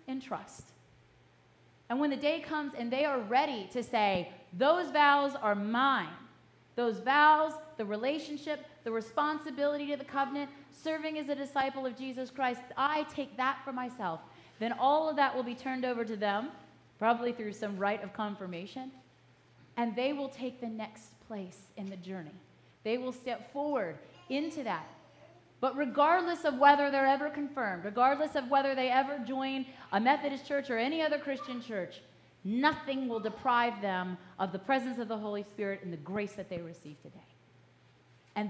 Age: 30-49